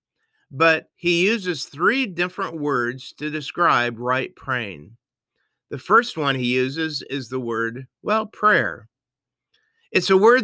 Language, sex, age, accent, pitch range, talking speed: English, male, 50-69, American, 135-210 Hz, 130 wpm